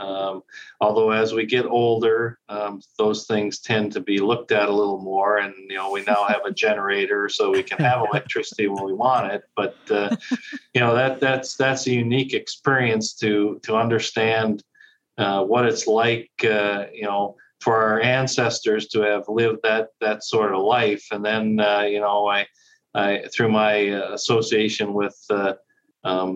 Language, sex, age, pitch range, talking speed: English, male, 40-59, 100-120 Hz, 180 wpm